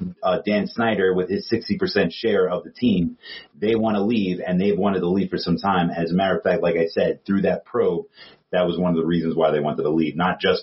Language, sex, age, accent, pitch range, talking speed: English, male, 30-49, American, 95-120 Hz, 260 wpm